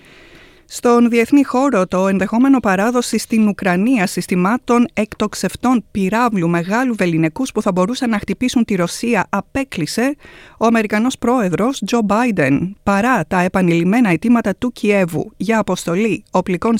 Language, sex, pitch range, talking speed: Greek, female, 180-220 Hz, 125 wpm